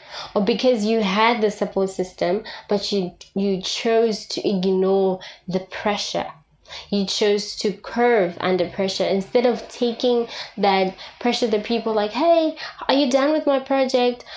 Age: 20-39